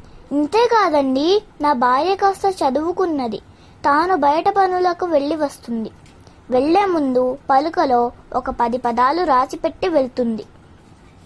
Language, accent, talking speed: Telugu, native, 95 wpm